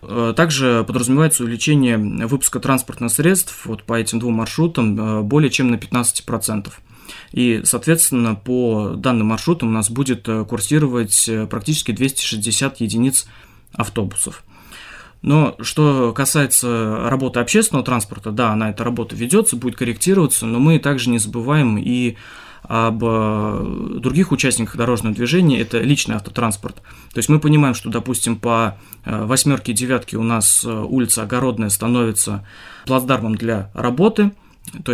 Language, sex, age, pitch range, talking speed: Russian, male, 20-39, 110-135 Hz, 125 wpm